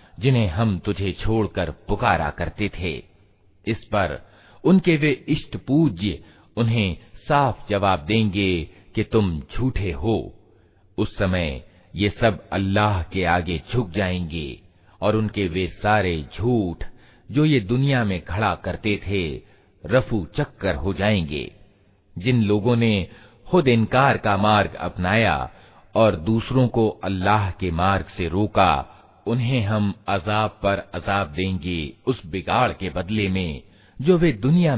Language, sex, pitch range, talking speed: Hindi, male, 95-115 Hz, 130 wpm